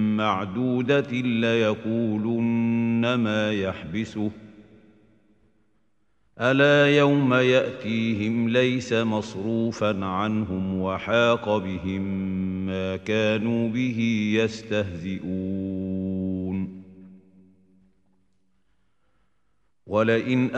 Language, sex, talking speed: Arabic, male, 50 wpm